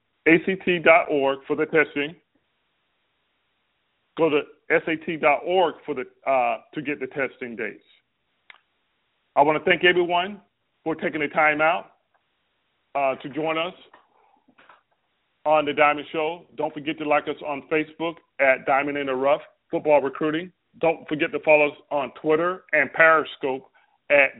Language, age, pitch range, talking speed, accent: English, 40-59, 145-165 Hz, 135 wpm, American